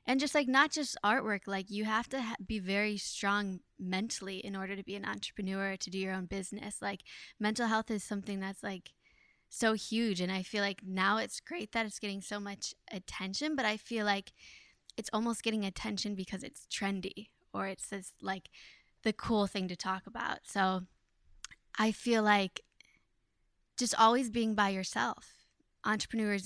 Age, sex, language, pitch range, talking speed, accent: 10-29, female, English, 190-220 Hz, 175 wpm, American